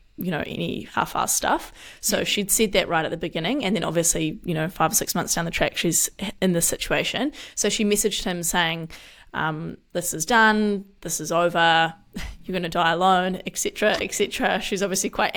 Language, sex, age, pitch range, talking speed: English, female, 20-39, 175-205 Hz, 205 wpm